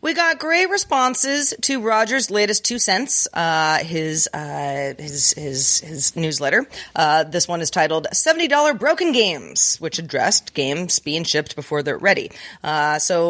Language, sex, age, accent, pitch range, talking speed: English, female, 30-49, American, 160-235 Hz, 155 wpm